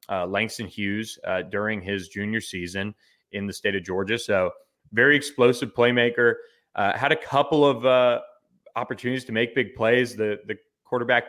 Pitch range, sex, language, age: 100-115 Hz, male, English, 20-39